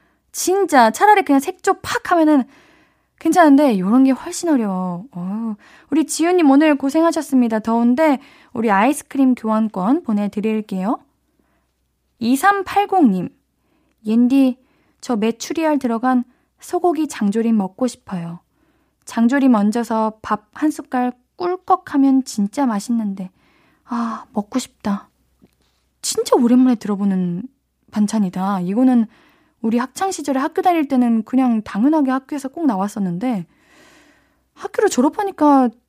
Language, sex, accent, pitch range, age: Korean, female, native, 220-315 Hz, 20-39